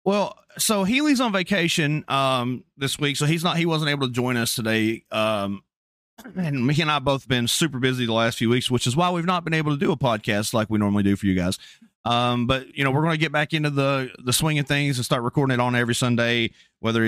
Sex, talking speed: male, 255 wpm